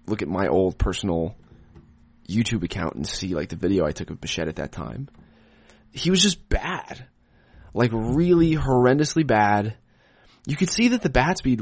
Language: English